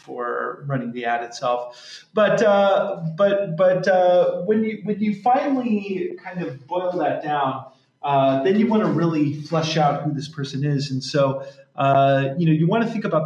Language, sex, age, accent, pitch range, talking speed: English, male, 30-49, American, 140-175 Hz, 190 wpm